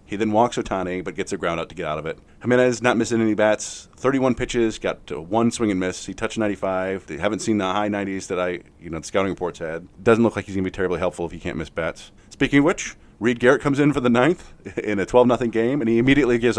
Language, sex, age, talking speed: English, male, 30-49, 275 wpm